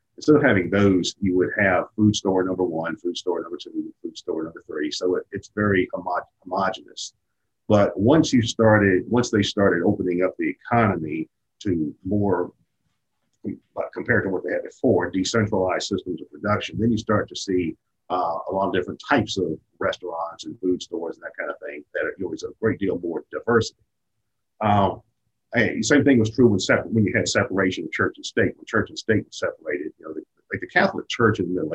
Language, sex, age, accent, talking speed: English, male, 50-69, American, 215 wpm